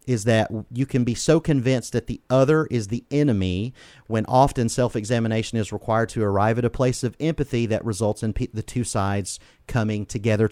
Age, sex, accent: 40-59, male, American